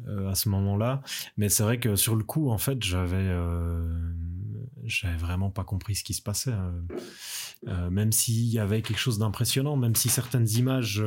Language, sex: French, male